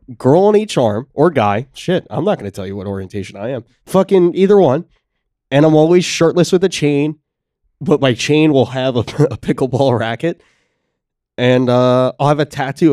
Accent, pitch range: American, 105-145 Hz